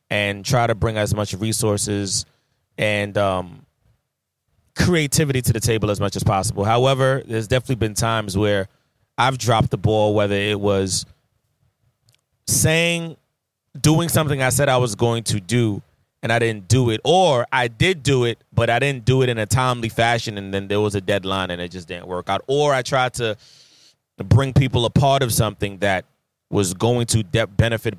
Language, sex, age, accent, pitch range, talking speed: English, male, 20-39, American, 105-125 Hz, 185 wpm